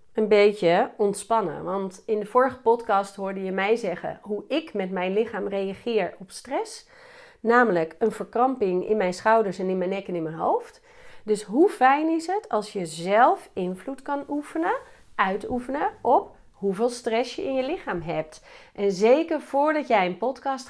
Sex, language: female, Dutch